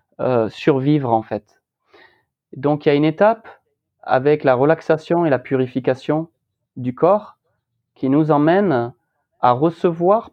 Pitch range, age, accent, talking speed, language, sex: 130-175 Hz, 30-49, French, 135 wpm, French, male